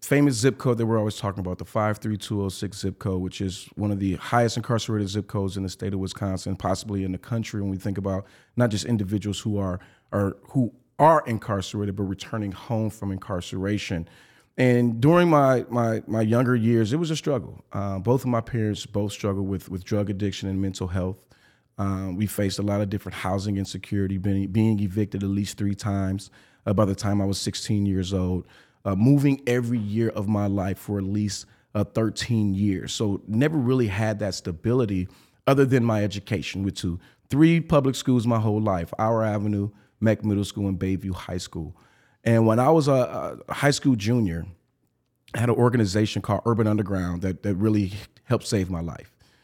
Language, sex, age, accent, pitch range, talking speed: English, male, 30-49, American, 95-115 Hz, 195 wpm